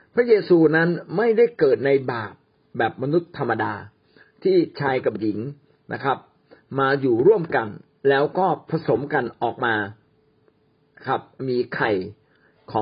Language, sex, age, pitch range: Thai, male, 50-69, 130-200 Hz